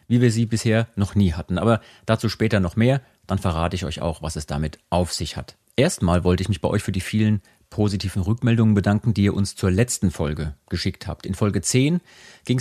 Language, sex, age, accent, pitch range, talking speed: German, male, 40-59, German, 90-115 Hz, 225 wpm